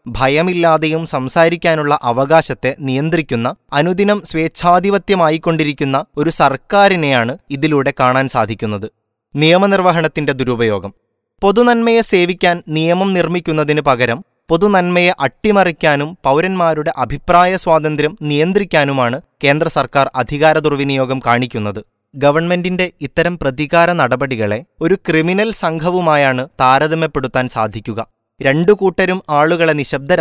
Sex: male